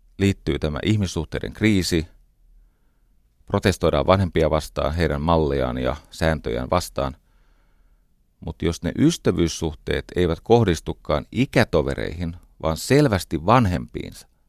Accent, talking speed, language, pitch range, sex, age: native, 90 wpm, Finnish, 80-100 Hz, male, 30-49